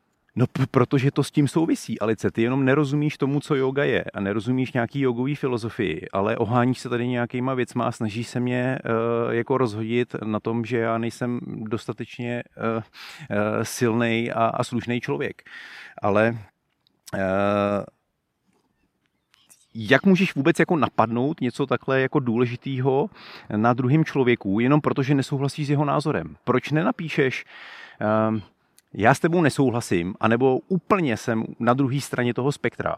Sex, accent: male, native